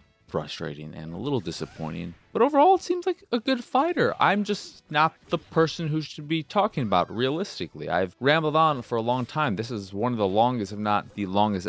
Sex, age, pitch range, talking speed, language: male, 20-39, 95-125 Hz, 210 wpm, English